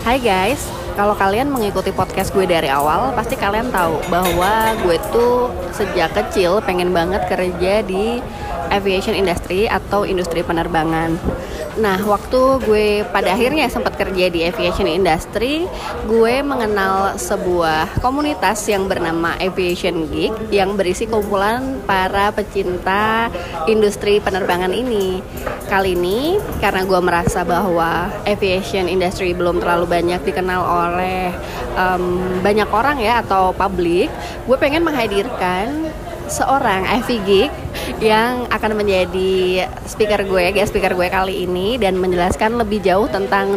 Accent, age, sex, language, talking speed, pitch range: native, 20-39, female, Indonesian, 125 wpm, 180-210 Hz